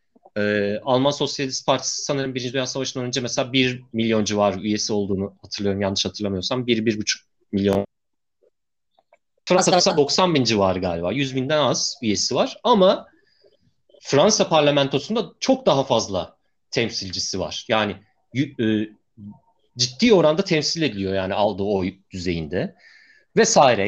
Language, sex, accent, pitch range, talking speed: Turkish, male, native, 105-140 Hz, 125 wpm